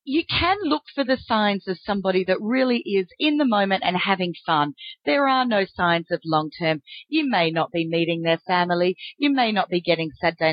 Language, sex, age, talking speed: English, female, 40-59, 205 wpm